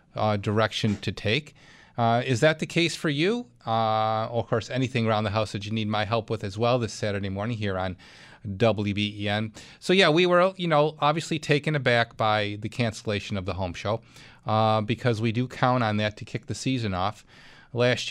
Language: English